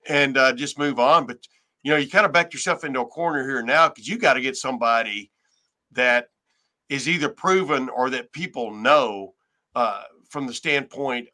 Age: 50-69